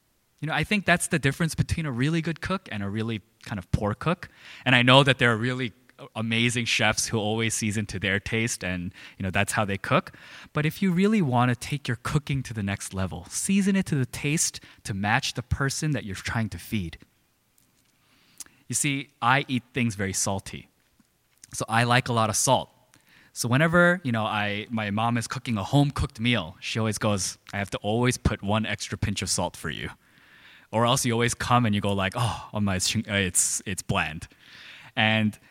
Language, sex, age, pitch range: Korean, male, 20-39, 105-135 Hz